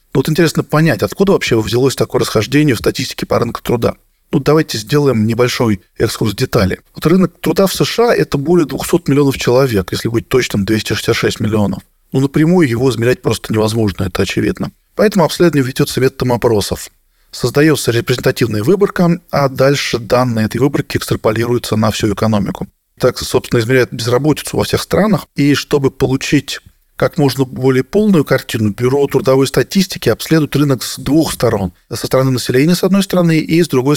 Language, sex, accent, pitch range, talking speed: Russian, male, native, 115-150 Hz, 165 wpm